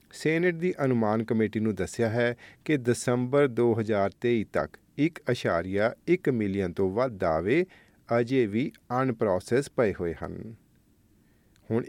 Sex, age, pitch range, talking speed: male, 40-59, 100-135 Hz, 115 wpm